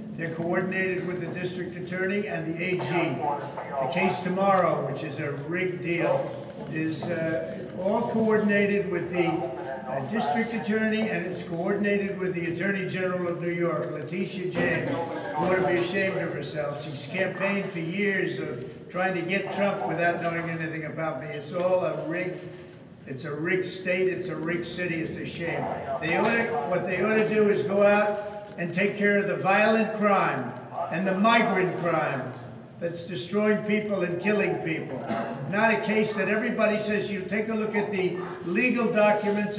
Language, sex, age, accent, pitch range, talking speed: English, male, 60-79, American, 170-205 Hz, 175 wpm